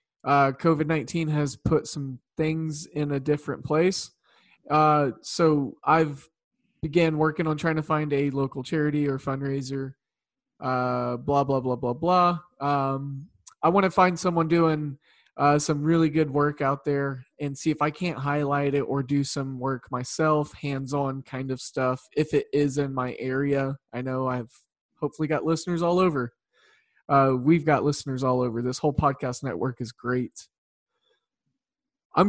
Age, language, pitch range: 20-39, English, 140-170 Hz